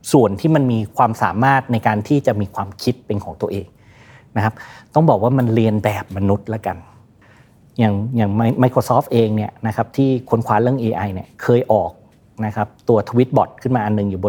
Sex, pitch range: male, 110-130 Hz